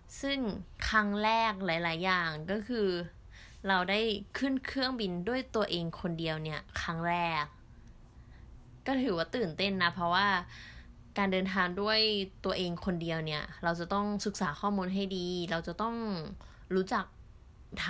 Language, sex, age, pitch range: Thai, female, 20-39, 175-215 Hz